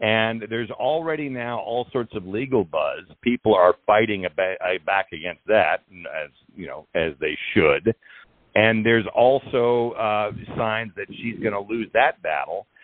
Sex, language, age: male, English, 50-69